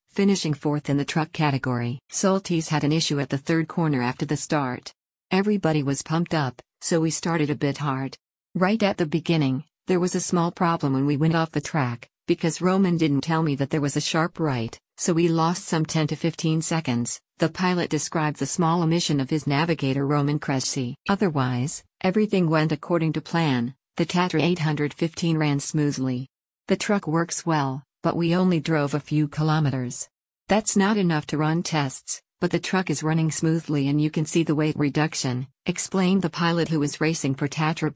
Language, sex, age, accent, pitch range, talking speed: English, female, 50-69, American, 145-170 Hz, 190 wpm